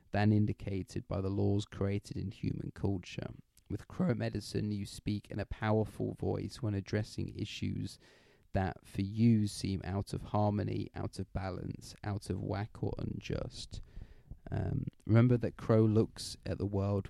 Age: 30-49